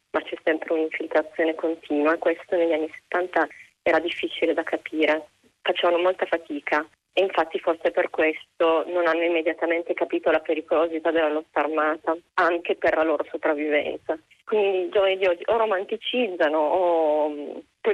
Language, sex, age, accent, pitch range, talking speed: Italian, female, 20-39, native, 160-185 Hz, 145 wpm